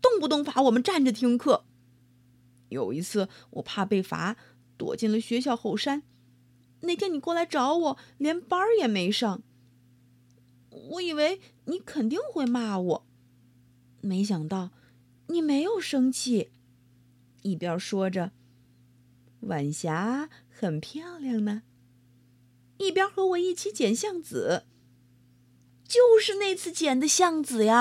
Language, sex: Chinese, female